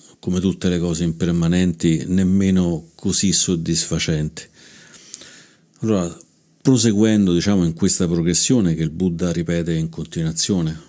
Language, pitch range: Italian, 85-95 Hz